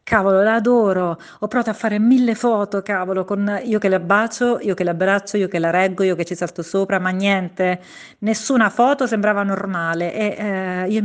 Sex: female